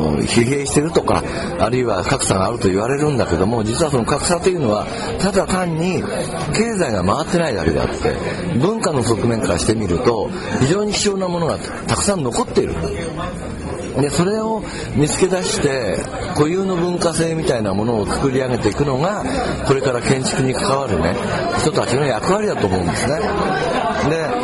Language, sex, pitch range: Japanese, male, 115-185 Hz